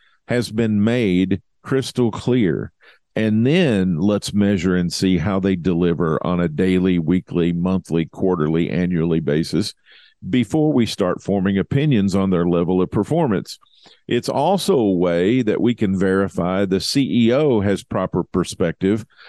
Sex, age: male, 50-69